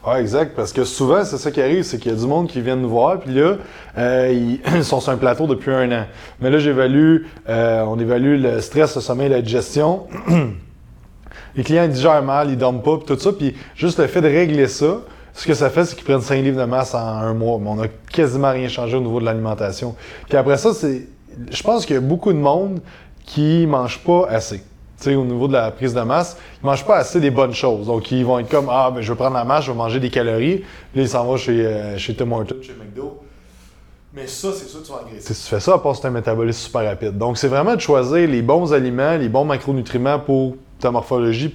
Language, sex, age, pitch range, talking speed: French, male, 20-39, 115-145 Hz, 255 wpm